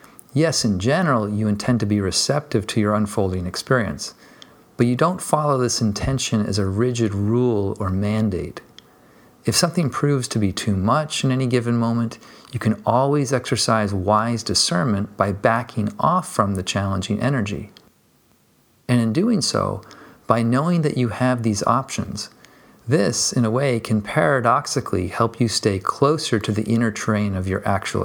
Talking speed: 165 wpm